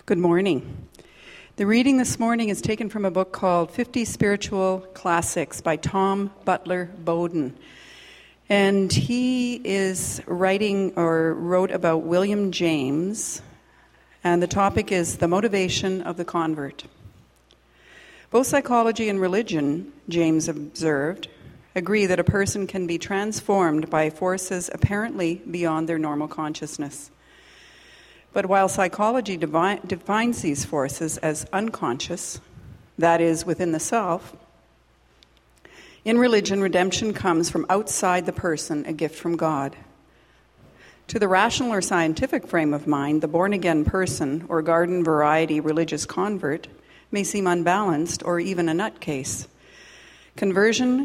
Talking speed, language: 125 wpm, English